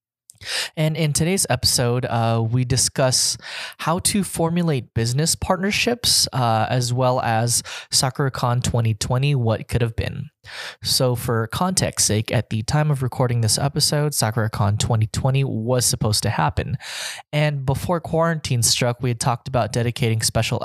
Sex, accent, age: male, American, 20-39